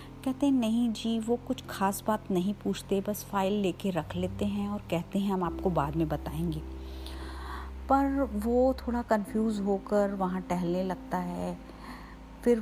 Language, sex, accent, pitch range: Hindi, female, native, 170-215 Hz